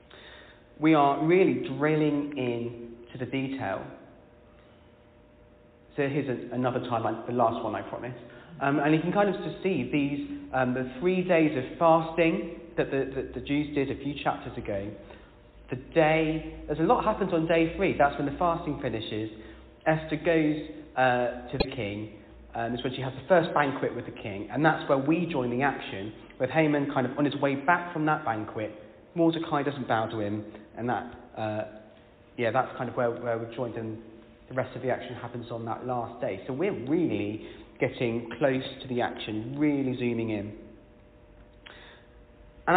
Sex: male